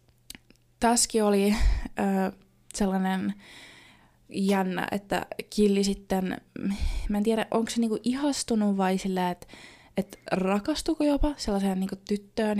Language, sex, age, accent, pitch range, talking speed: Finnish, female, 20-39, native, 185-210 Hz, 115 wpm